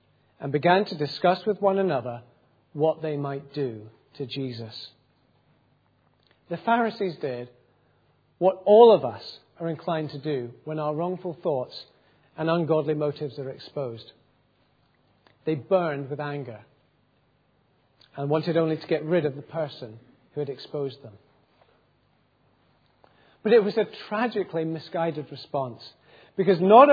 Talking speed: 130 wpm